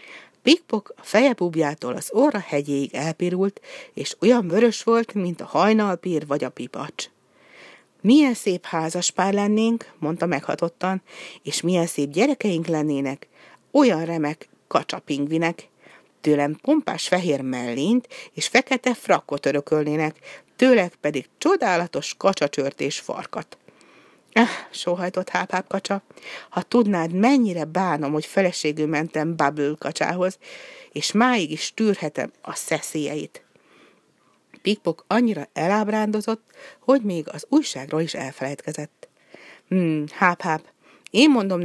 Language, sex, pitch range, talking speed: Hungarian, female, 150-215 Hz, 110 wpm